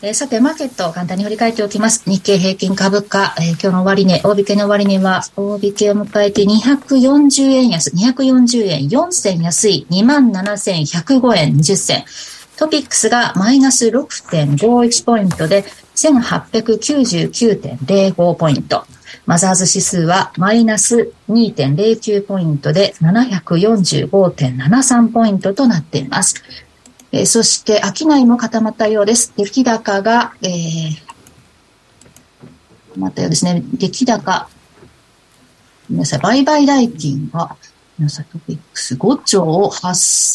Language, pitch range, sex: Japanese, 165-230 Hz, female